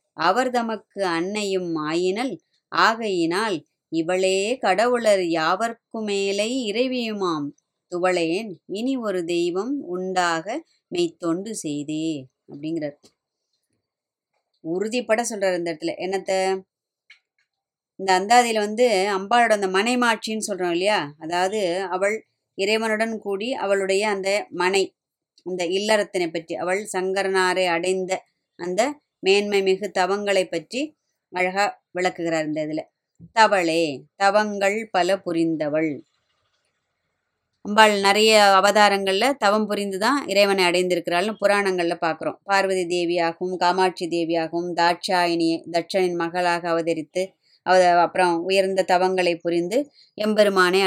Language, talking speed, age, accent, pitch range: Tamil, 90 wpm, 20-39, native, 170-205 Hz